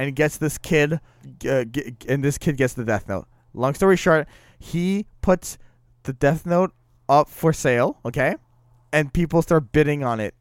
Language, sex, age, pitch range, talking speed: English, male, 20-39, 130-160 Hz, 175 wpm